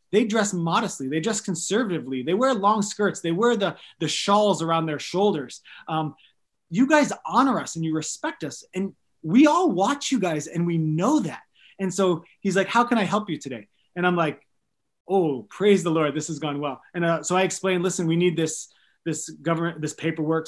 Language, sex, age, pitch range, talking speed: English, male, 20-39, 155-200 Hz, 210 wpm